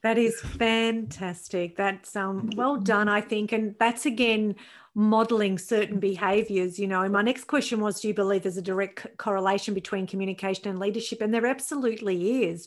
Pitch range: 195-230 Hz